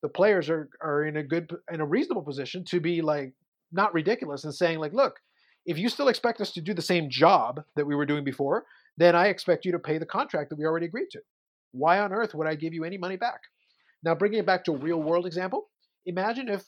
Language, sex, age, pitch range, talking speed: English, male, 30-49, 150-180 Hz, 250 wpm